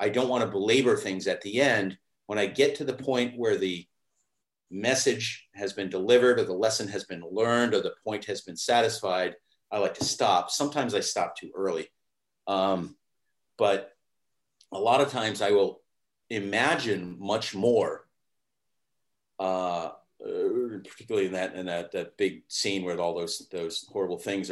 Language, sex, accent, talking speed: English, male, American, 165 wpm